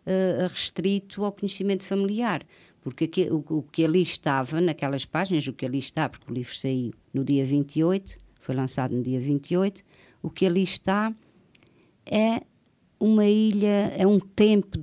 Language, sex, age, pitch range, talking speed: Portuguese, female, 50-69, 140-180 Hz, 150 wpm